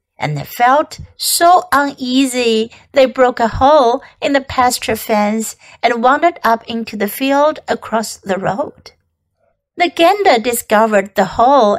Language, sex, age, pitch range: Chinese, female, 60-79, 210-275 Hz